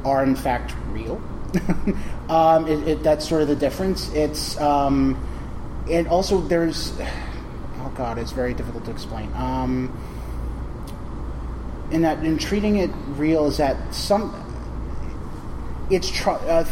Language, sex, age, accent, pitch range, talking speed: English, male, 30-49, American, 130-165 Hz, 135 wpm